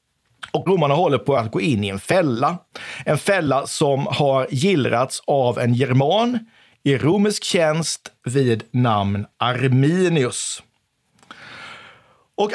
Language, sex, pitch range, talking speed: Swedish, male, 130-170 Hz, 120 wpm